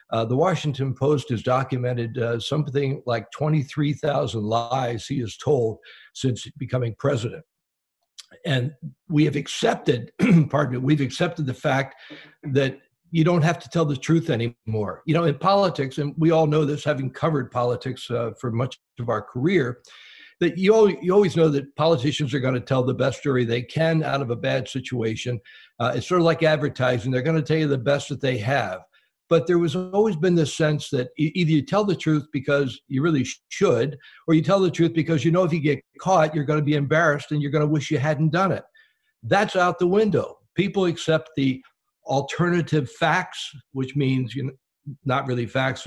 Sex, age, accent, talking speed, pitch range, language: male, 60-79, American, 195 wpm, 130-160 Hz, English